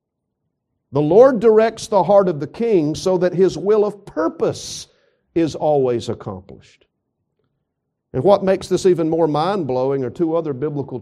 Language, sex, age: English, male, 50-69